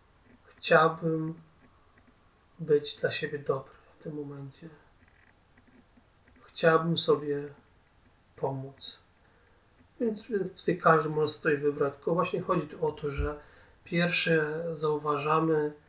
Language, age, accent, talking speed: Polish, 30-49, native, 100 wpm